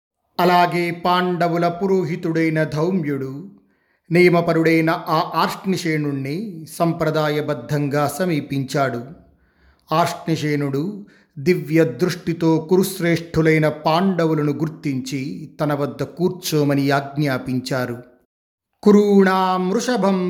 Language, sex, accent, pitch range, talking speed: Telugu, male, native, 140-175 Hz, 60 wpm